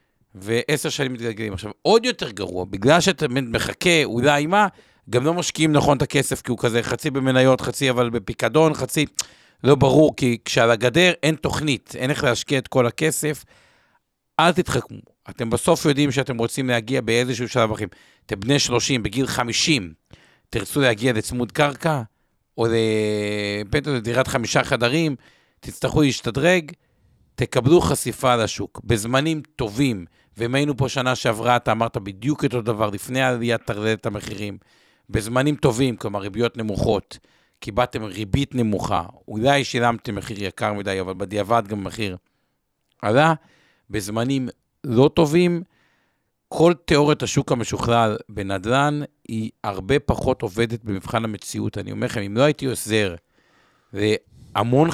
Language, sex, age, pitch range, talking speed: Hebrew, male, 50-69, 110-145 Hz, 140 wpm